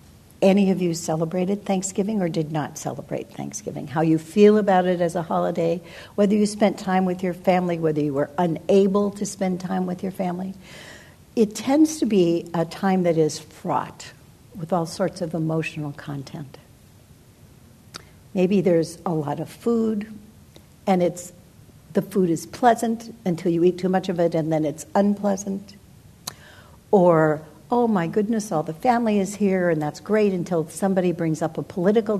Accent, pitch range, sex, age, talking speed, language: American, 165-205 Hz, female, 60-79, 170 wpm, English